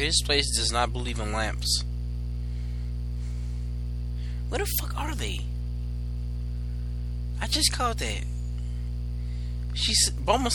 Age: 20-39